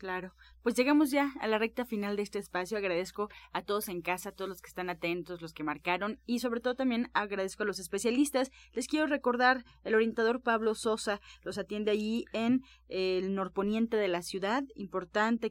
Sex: female